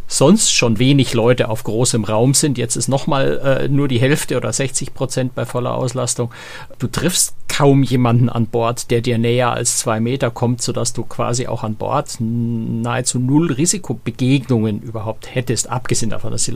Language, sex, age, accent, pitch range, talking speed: German, male, 50-69, German, 120-135 Hz, 175 wpm